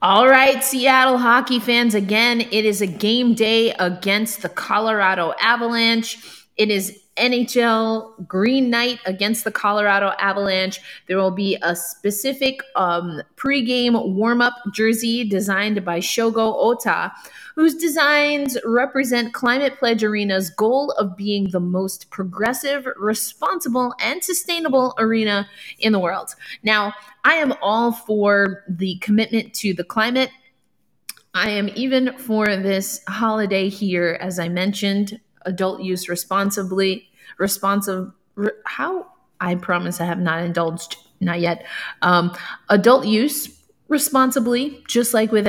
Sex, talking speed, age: female, 125 wpm, 20-39